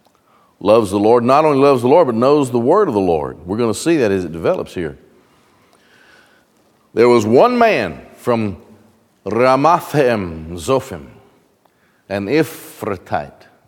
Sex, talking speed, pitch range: male, 145 wpm, 105-145 Hz